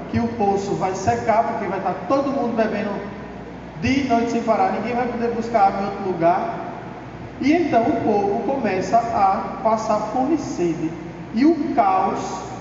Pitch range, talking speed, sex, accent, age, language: 185-255 Hz, 175 wpm, male, Brazilian, 20-39, Portuguese